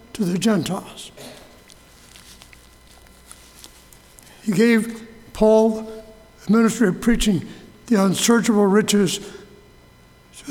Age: 60-79